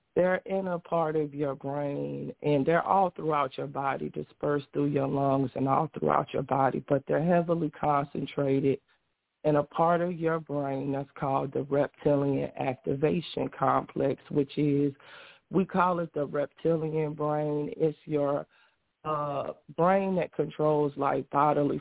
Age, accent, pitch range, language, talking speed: 40-59, American, 140-155 Hz, English, 150 wpm